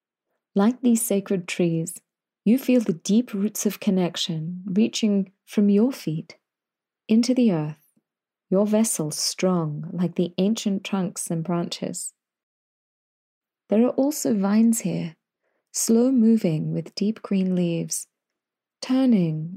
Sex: female